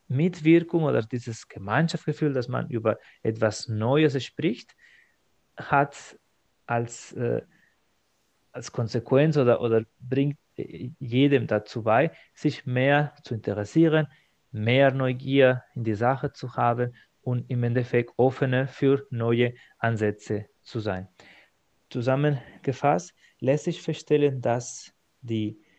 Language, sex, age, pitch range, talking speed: German, male, 30-49, 115-150 Hz, 110 wpm